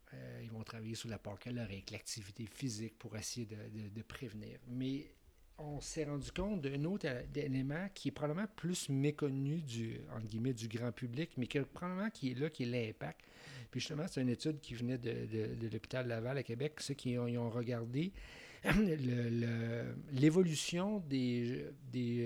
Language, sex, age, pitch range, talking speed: French, male, 50-69, 115-145 Hz, 190 wpm